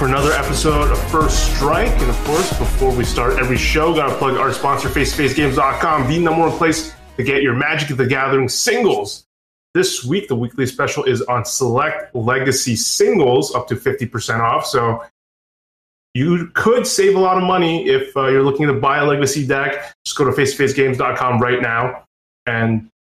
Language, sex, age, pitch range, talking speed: English, male, 30-49, 130-160 Hz, 185 wpm